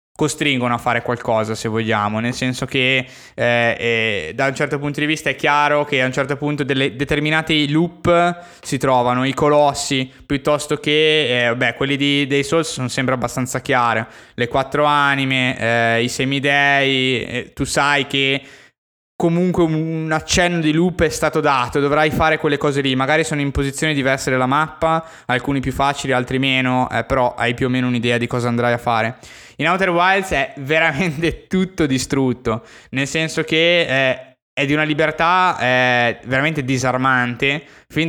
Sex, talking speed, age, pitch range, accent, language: male, 170 wpm, 20-39, 130-160 Hz, native, Italian